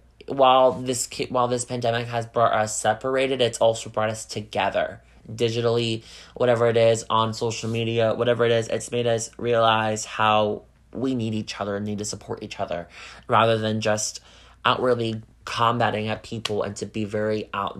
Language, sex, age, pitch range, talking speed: English, male, 20-39, 110-125 Hz, 170 wpm